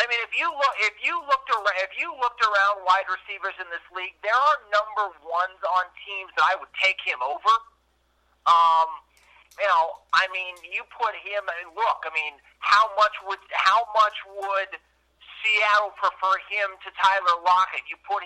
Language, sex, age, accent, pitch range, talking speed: English, male, 50-69, American, 170-205 Hz, 190 wpm